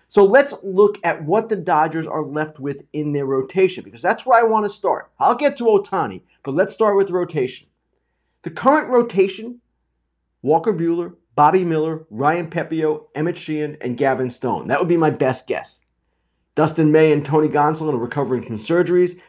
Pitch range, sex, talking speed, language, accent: 130-195 Hz, male, 185 wpm, English, American